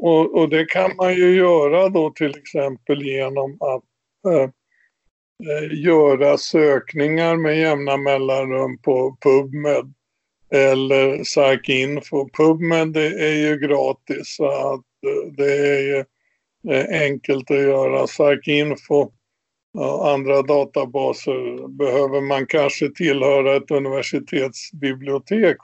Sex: male